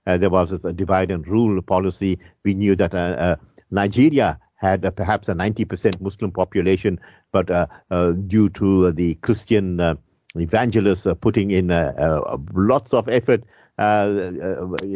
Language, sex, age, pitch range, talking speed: English, male, 50-69, 95-115 Hz, 165 wpm